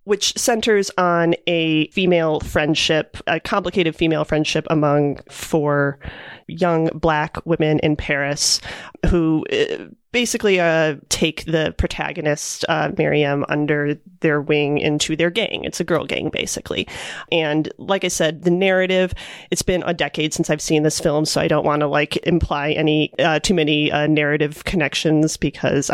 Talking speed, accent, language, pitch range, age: 155 wpm, American, English, 150-175 Hz, 30-49